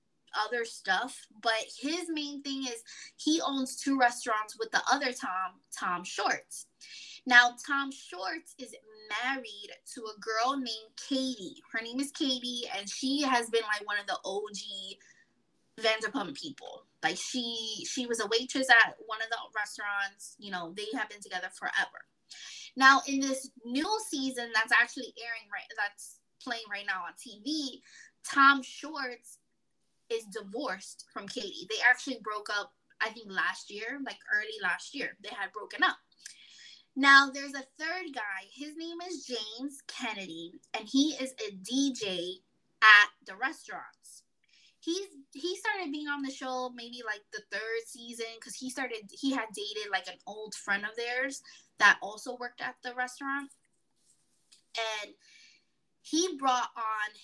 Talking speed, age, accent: 155 wpm, 20-39, American